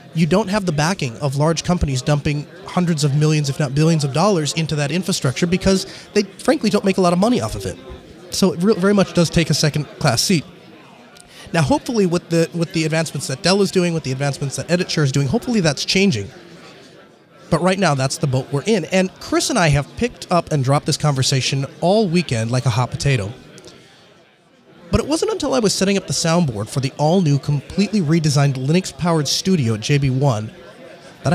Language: English